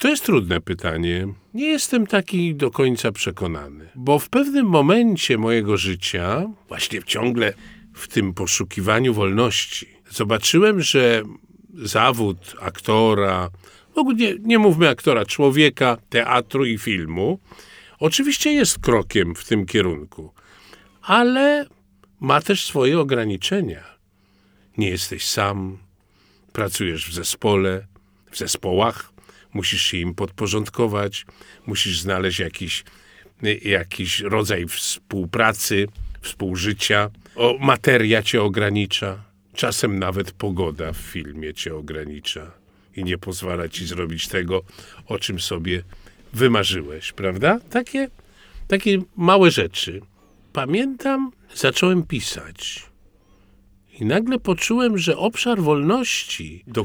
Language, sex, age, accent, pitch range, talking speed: Polish, male, 50-69, native, 95-150 Hz, 105 wpm